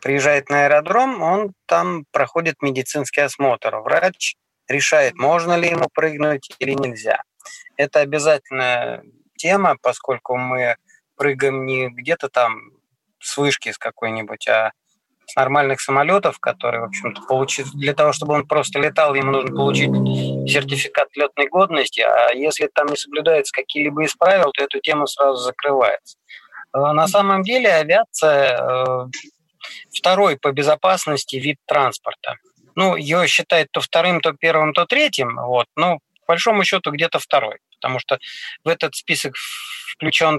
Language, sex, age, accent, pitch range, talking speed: Russian, male, 30-49, native, 135-170 Hz, 135 wpm